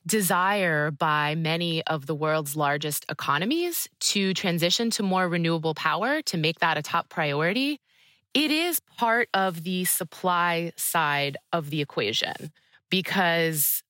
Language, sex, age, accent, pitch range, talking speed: English, female, 20-39, American, 160-200 Hz, 135 wpm